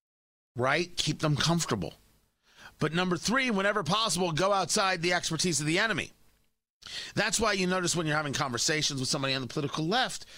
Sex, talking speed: male, 175 wpm